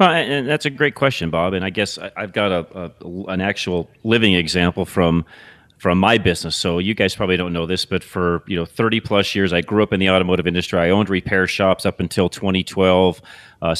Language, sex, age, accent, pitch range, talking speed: English, male, 40-59, American, 90-115 Hz, 230 wpm